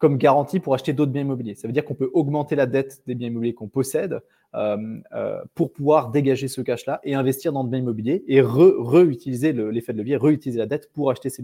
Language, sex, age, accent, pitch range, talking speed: French, male, 20-39, French, 115-145 Hz, 235 wpm